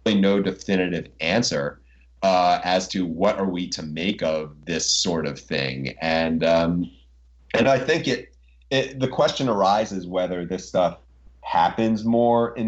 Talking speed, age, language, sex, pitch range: 150 wpm, 30-49, English, male, 75-95 Hz